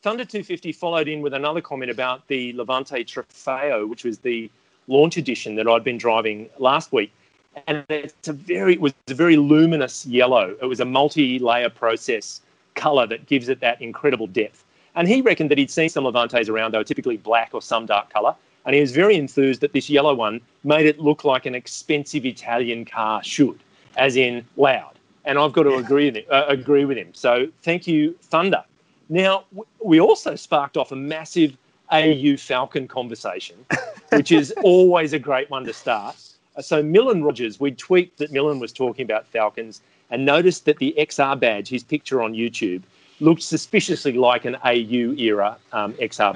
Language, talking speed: English, 185 wpm